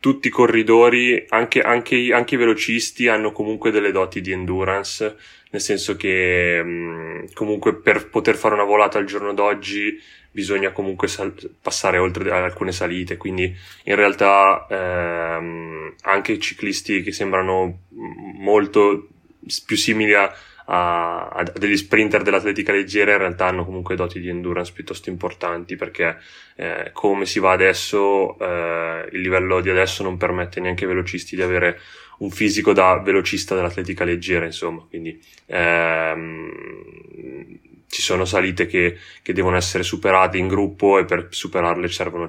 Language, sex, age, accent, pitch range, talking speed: Italian, male, 20-39, native, 85-100 Hz, 145 wpm